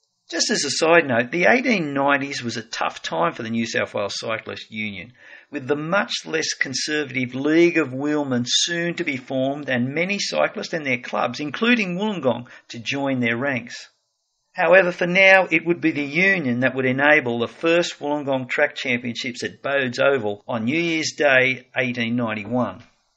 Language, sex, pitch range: English, male, 125-170 Hz